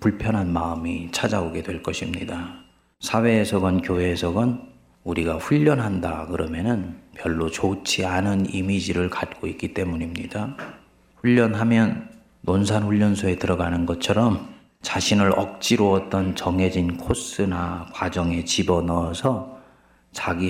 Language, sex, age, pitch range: Korean, male, 30-49, 85-110 Hz